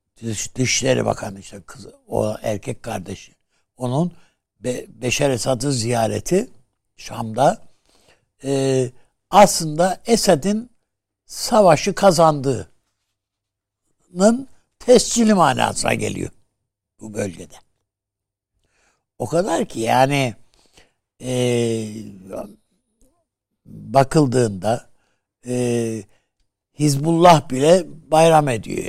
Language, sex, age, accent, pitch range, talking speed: Turkish, male, 60-79, native, 105-155 Hz, 70 wpm